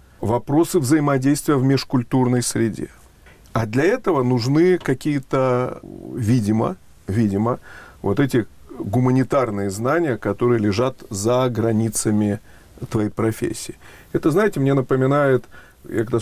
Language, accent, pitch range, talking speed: Russian, native, 115-135 Hz, 105 wpm